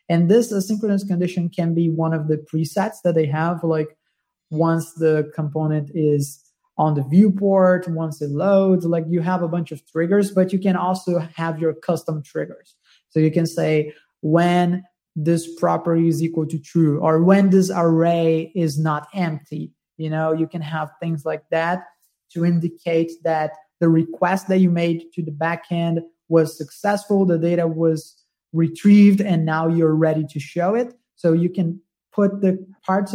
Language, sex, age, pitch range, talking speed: English, male, 20-39, 155-175 Hz, 170 wpm